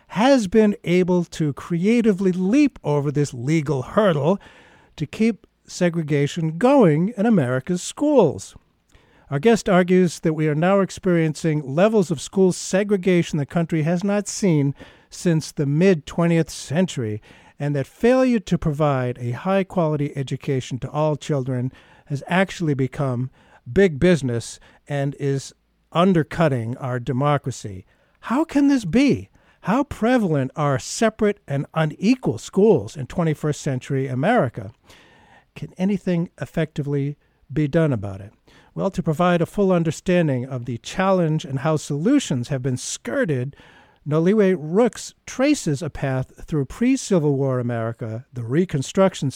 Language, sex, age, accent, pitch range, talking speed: English, male, 50-69, American, 135-190 Hz, 130 wpm